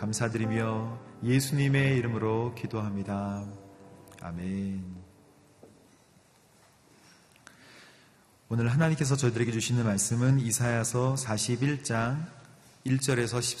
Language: Korean